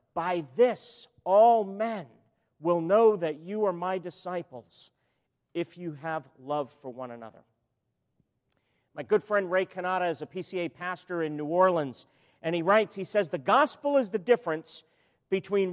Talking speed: 155 wpm